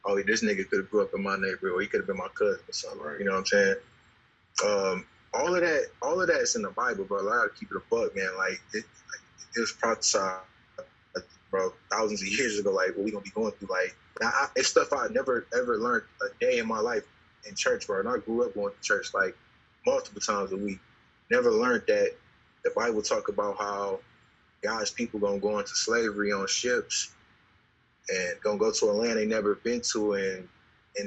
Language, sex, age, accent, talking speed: English, male, 20-39, American, 230 wpm